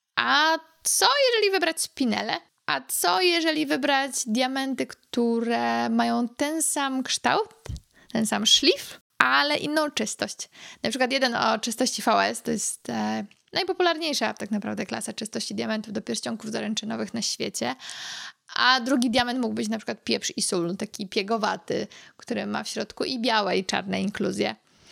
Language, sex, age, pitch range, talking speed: Polish, female, 20-39, 215-270 Hz, 145 wpm